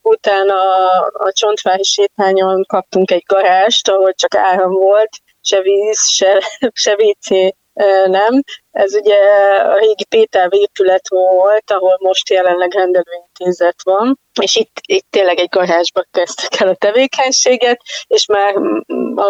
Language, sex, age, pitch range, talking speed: Hungarian, female, 20-39, 185-205 Hz, 135 wpm